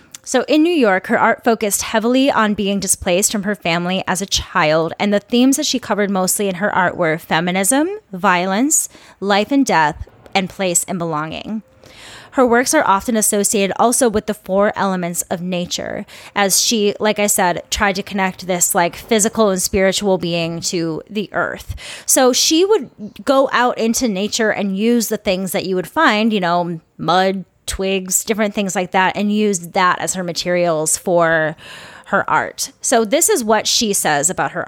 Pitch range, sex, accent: 185-230 Hz, female, American